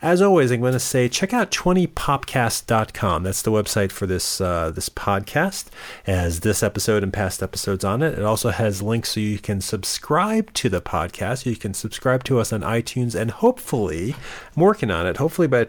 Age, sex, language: 40-59, male, English